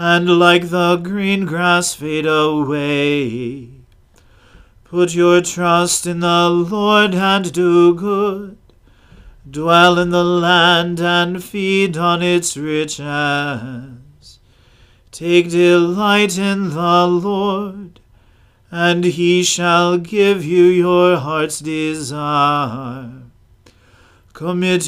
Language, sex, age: English, male, 40-59